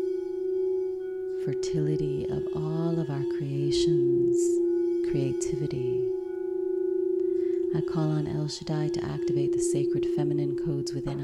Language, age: English, 30-49